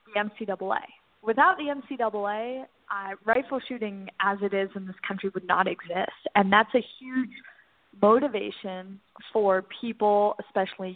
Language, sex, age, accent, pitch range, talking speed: English, female, 20-39, American, 195-230 Hz, 135 wpm